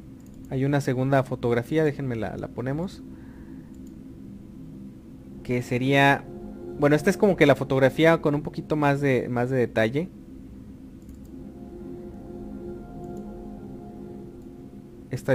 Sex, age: male, 30-49